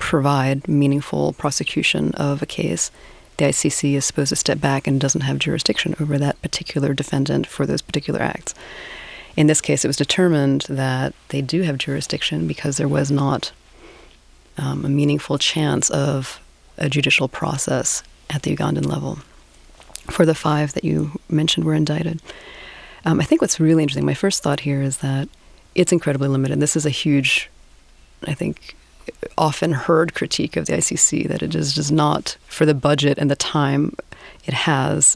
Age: 30-49